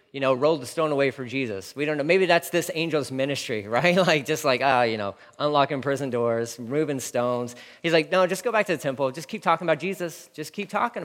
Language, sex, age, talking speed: English, male, 40-59, 250 wpm